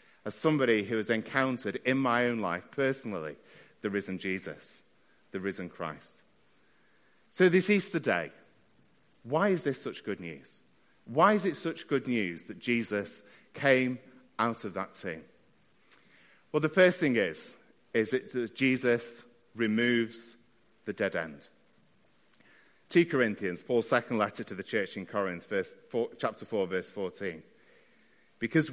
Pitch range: 110-140 Hz